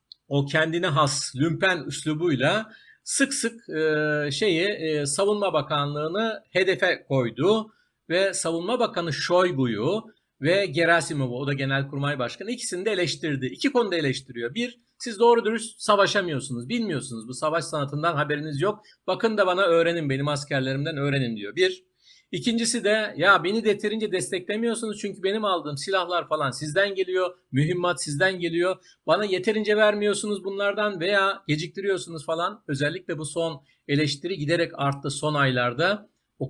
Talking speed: 135 wpm